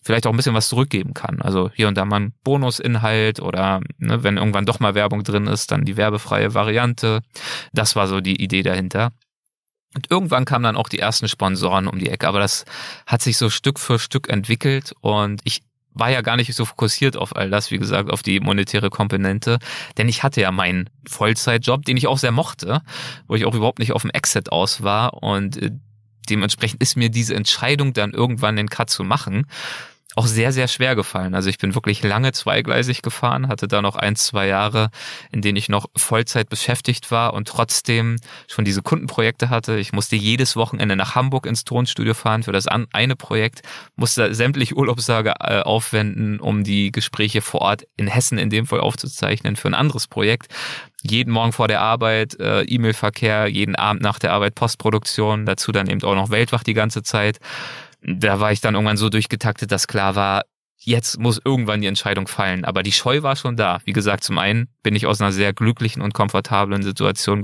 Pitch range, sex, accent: 105-120 Hz, male, German